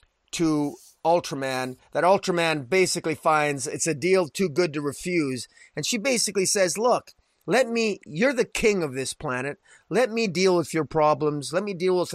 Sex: male